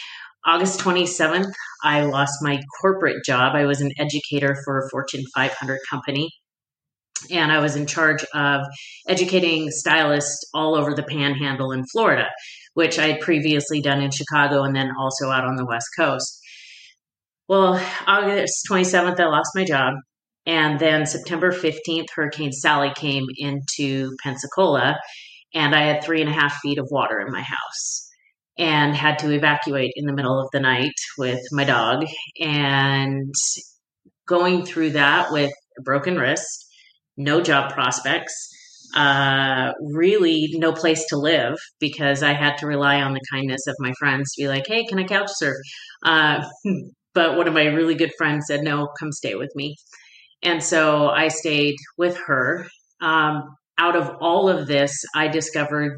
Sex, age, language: female, 30-49, English